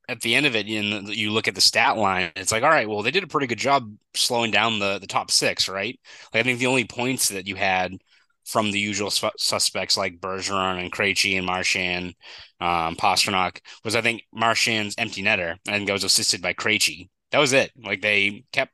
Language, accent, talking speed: English, American, 225 wpm